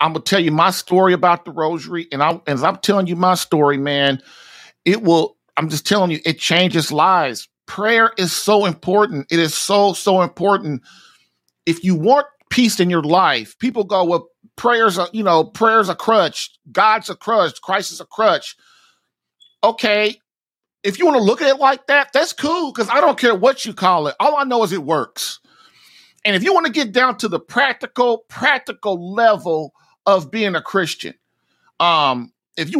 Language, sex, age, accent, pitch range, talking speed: English, male, 50-69, American, 170-225 Hz, 190 wpm